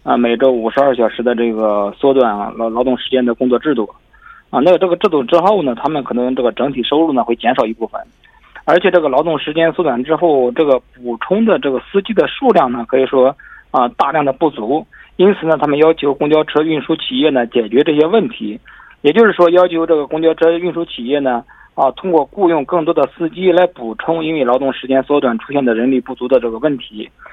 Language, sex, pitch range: Korean, male, 130-175 Hz